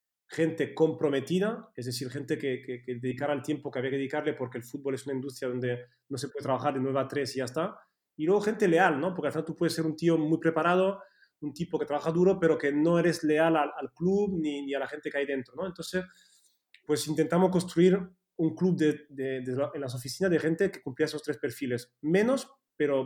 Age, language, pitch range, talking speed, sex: 30-49, Portuguese, 135-170 Hz, 240 wpm, male